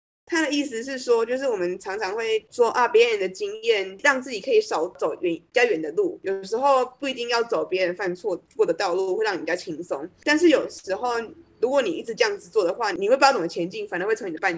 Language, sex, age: Chinese, female, 20-39